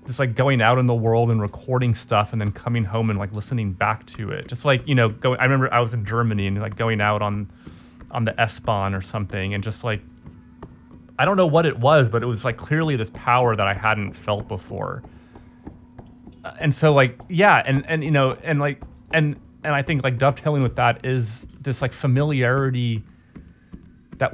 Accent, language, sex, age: American, English, male, 30-49